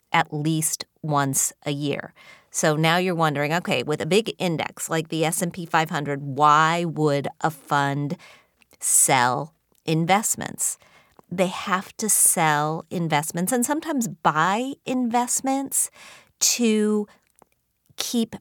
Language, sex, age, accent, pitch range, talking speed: English, female, 40-59, American, 155-195 Hz, 115 wpm